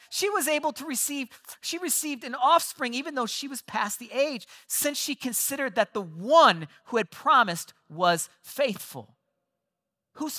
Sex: male